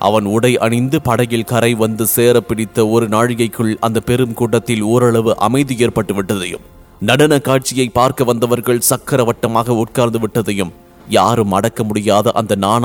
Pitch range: 115-140 Hz